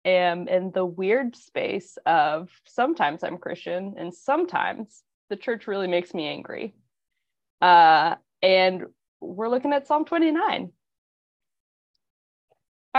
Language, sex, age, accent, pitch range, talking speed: English, female, 20-39, American, 195-235 Hz, 110 wpm